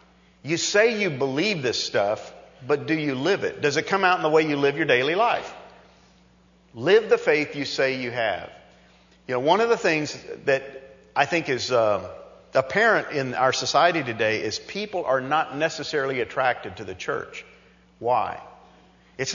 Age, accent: 50-69, American